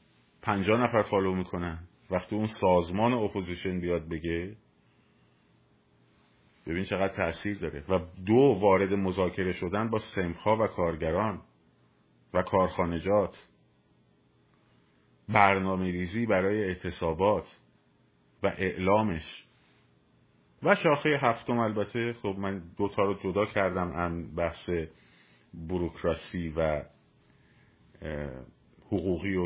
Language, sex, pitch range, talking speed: Persian, male, 85-105 Hz, 95 wpm